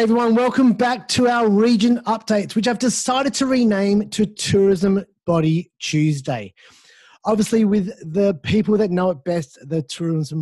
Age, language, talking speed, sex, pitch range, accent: 30-49, English, 150 wpm, male, 180-230 Hz, Australian